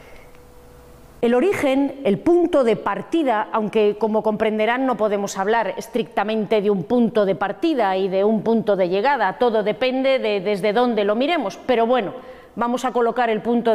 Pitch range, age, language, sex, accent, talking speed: 210-280 Hz, 30-49, Spanish, female, Spanish, 165 wpm